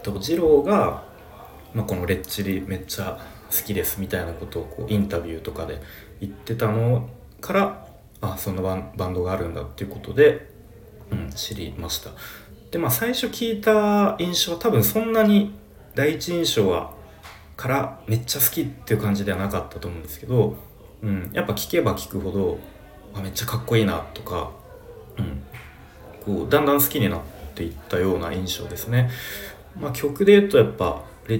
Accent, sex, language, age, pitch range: native, male, Japanese, 30-49, 95-120 Hz